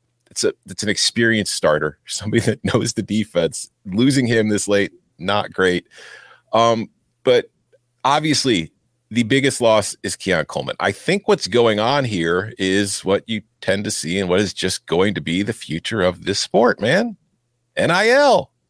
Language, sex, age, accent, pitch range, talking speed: English, male, 40-59, American, 110-145 Hz, 165 wpm